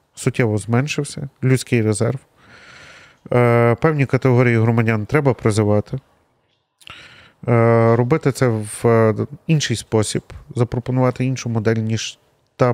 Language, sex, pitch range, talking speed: Ukrainian, male, 115-135 Hz, 90 wpm